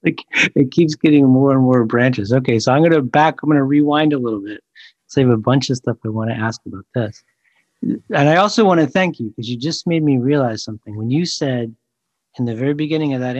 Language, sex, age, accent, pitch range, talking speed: English, male, 50-69, American, 120-150 Hz, 255 wpm